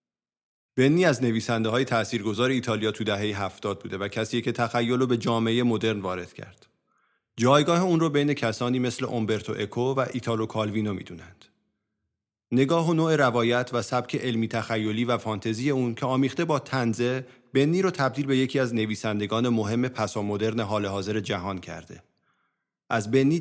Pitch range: 110-130 Hz